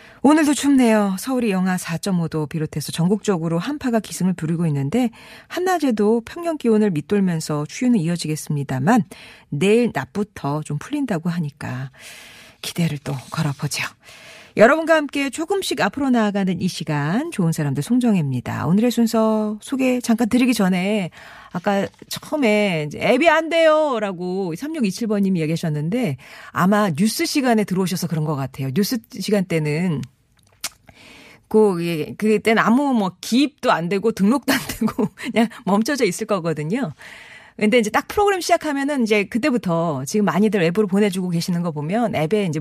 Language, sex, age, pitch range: Korean, female, 40-59, 165-240 Hz